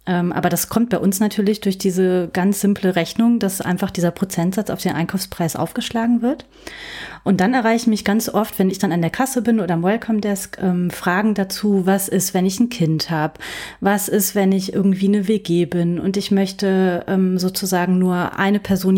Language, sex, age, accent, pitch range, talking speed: German, female, 30-49, German, 180-210 Hz, 195 wpm